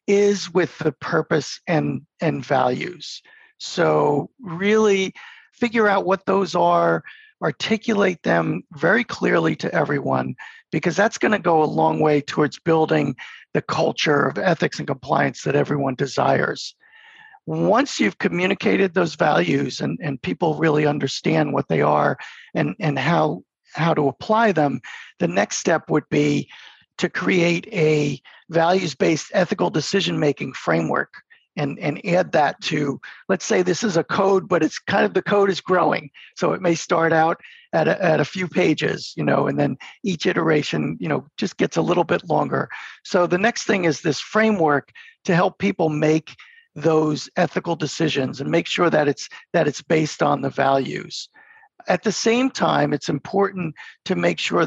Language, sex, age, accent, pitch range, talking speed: English, male, 50-69, American, 155-205 Hz, 165 wpm